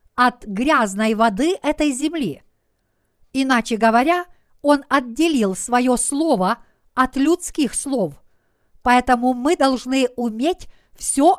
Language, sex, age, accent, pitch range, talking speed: Russian, female, 50-69, native, 225-285 Hz, 100 wpm